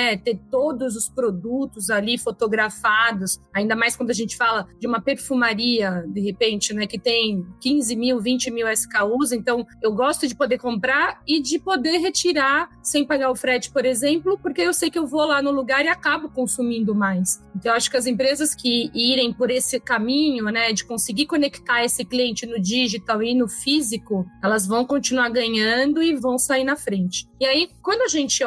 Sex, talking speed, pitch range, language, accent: female, 190 wpm, 225-290 Hz, Portuguese, Brazilian